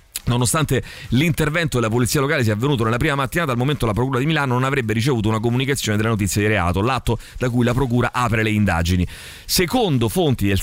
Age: 30-49